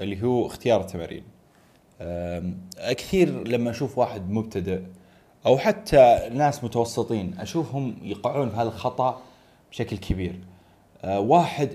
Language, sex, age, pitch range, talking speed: Arabic, male, 20-39, 95-125 Hz, 105 wpm